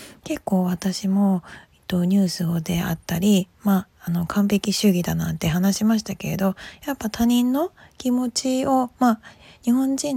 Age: 20-39